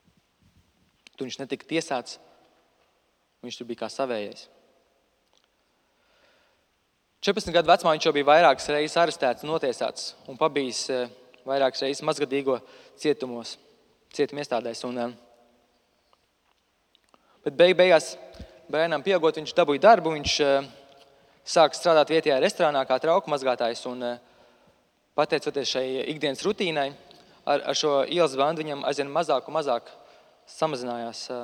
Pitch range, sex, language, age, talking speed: 125-155 Hz, male, English, 20-39, 110 wpm